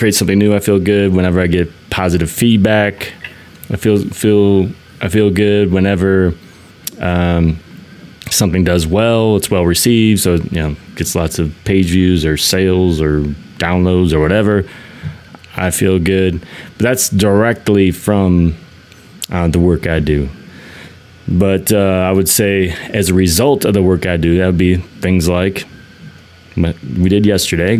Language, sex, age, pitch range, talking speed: English, male, 20-39, 90-105 Hz, 155 wpm